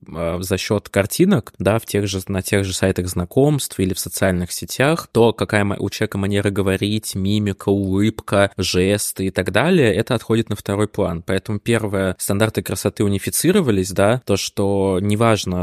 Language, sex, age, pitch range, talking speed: Russian, male, 20-39, 95-110 Hz, 160 wpm